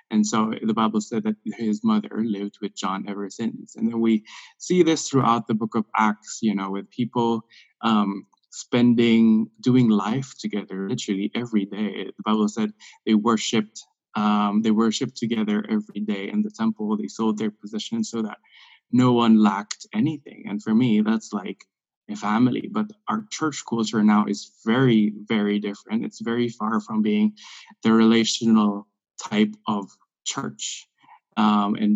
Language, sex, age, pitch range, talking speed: English, male, 20-39, 105-170 Hz, 165 wpm